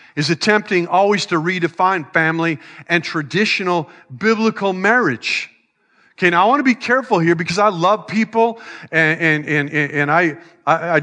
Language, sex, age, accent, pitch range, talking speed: English, male, 40-59, American, 165-210 Hz, 150 wpm